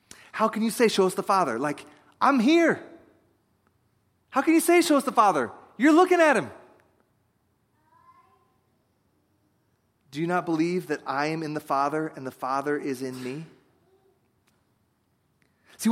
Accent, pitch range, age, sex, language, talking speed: American, 155-220 Hz, 30-49, male, English, 150 wpm